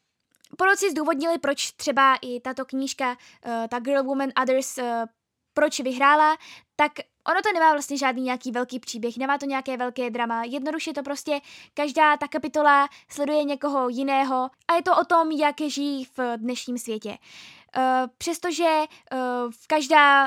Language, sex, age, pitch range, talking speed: Czech, female, 10-29, 235-290 Hz, 140 wpm